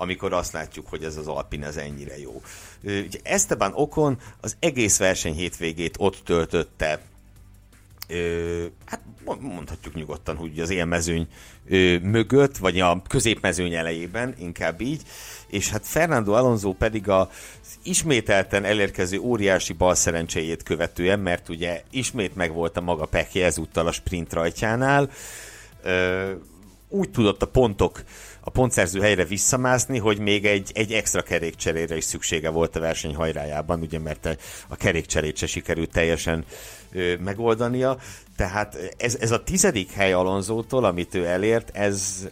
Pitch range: 85-110 Hz